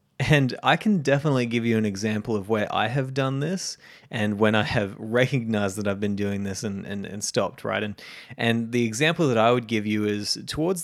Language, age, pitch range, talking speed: English, 20-39, 105-135 Hz, 220 wpm